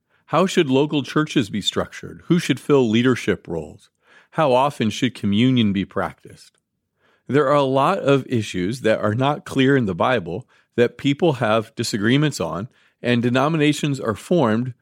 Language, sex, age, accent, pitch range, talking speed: English, male, 40-59, American, 105-135 Hz, 160 wpm